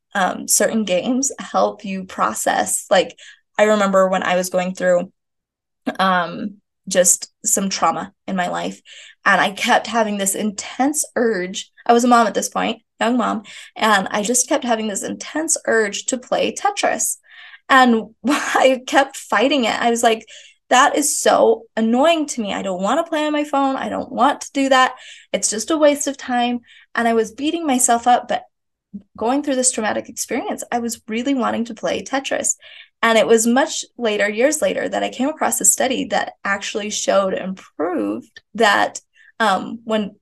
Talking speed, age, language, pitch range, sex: 180 wpm, 20-39, English, 205-270 Hz, female